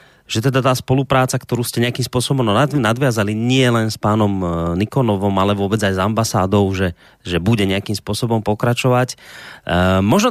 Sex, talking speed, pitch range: male, 155 wpm, 100-120 Hz